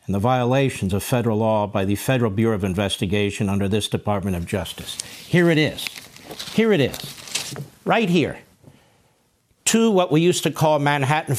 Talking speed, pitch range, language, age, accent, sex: 170 wpm, 135-190 Hz, English, 50-69, American, male